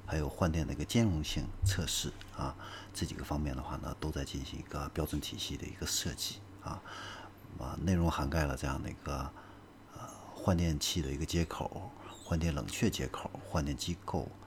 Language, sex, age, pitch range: Chinese, male, 50-69, 75-100 Hz